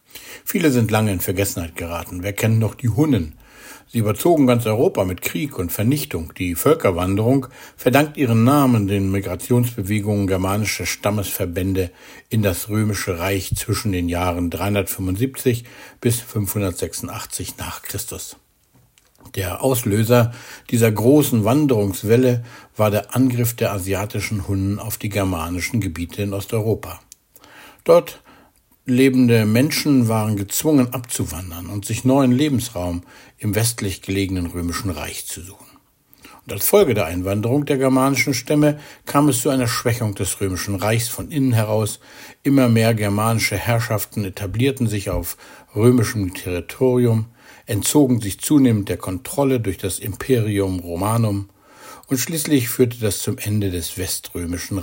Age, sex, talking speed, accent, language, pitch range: 60-79, male, 130 wpm, German, German, 95-125 Hz